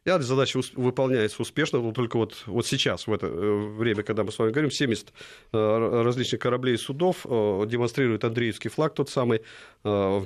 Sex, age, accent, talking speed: male, 40-59, native, 170 wpm